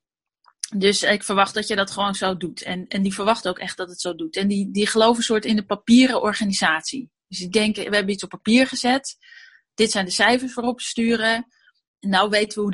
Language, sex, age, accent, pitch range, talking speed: Dutch, female, 30-49, Dutch, 190-230 Hz, 225 wpm